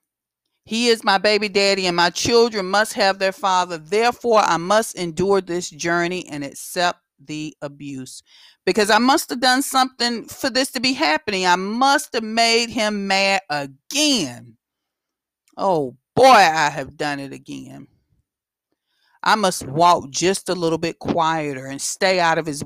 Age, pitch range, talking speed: 40-59, 160-215 Hz, 160 wpm